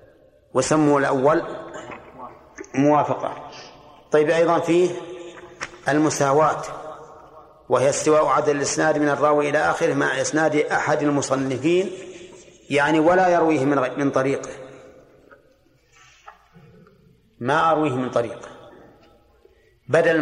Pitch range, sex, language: 135-165 Hz, male, Arabic